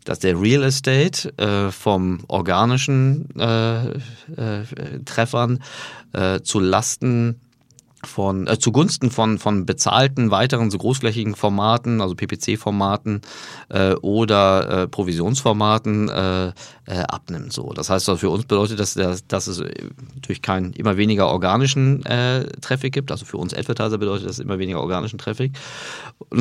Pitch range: 95-125 Hz